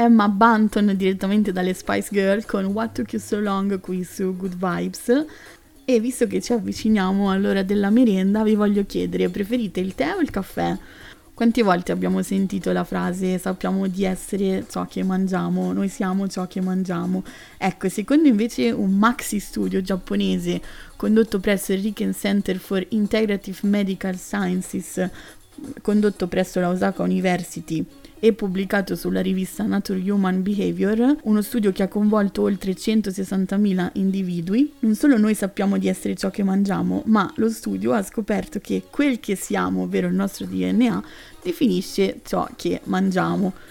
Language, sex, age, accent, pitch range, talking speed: Italian, female, 20-39, native, 185-225 Hz, 155 wpm